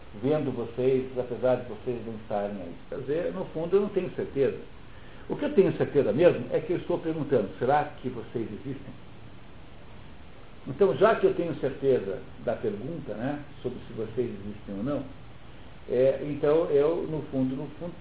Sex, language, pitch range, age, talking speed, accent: male, Portuguese, 120-160 Hz, 60-79, 175 wpm, Brazilian